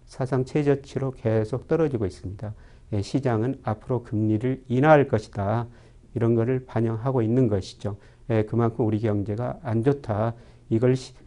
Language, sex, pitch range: Korean, male, 110-130 Hz